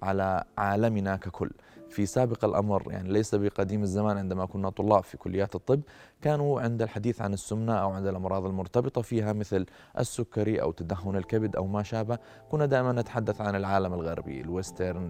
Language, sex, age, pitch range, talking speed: Arabic, male, 20-39, 95-115 Hz, 165 wpm